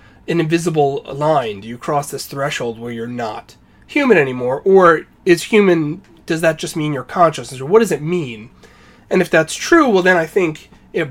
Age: 30-49